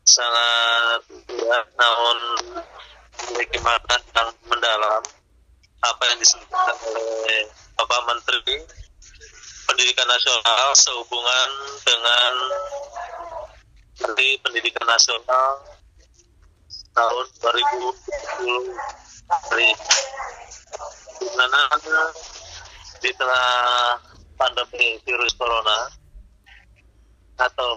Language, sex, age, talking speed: Indonesian, male, 30-49, 65 wpm